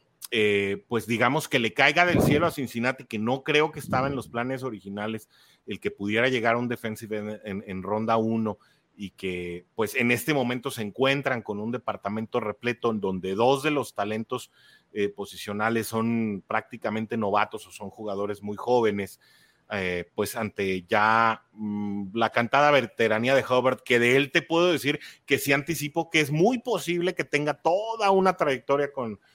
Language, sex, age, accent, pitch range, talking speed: English, male, 30-49, Mexican, 105-135 Hz, 180 wpm